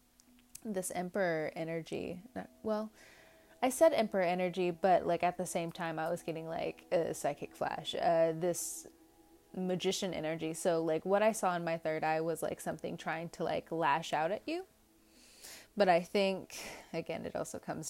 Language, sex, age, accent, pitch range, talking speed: English, female, 20-39, American, 160-185 Hz, 170 wpm